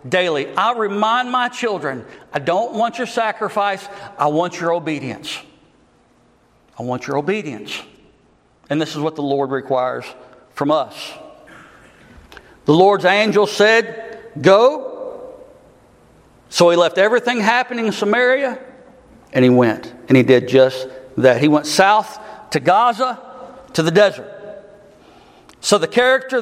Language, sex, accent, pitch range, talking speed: English, male, American, 155-250 Hz, 130 wpm